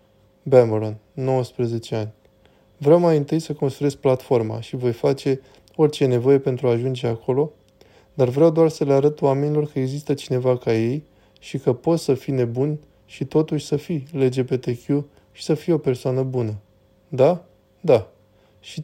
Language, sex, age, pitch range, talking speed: Romanian, male, 20-39, 120-150 Hz, 160 wpm